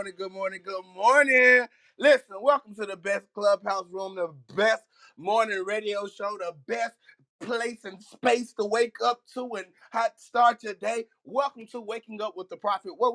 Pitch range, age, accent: 170-225 Hz, 30-49, American